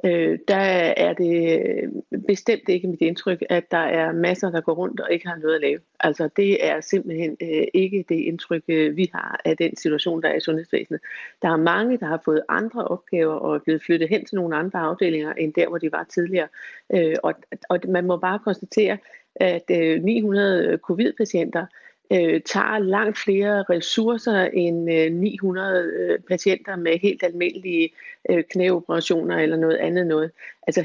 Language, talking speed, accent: Danish, 160 wpm, native